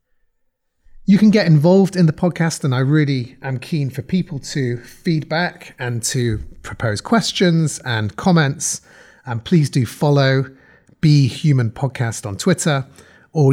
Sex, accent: male, British